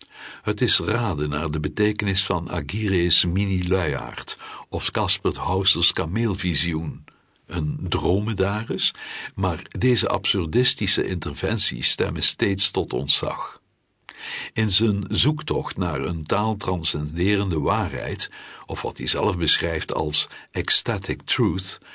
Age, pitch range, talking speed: 60-79, 85-105 Hz, 105 wpm